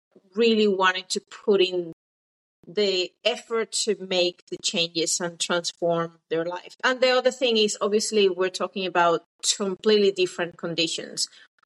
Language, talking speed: English, 145 wpm